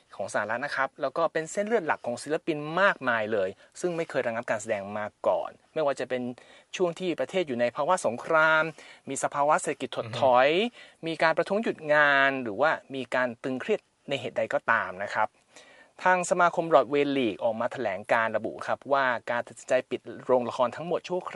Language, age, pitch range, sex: Thai, 30-49, 125-170 Hz, male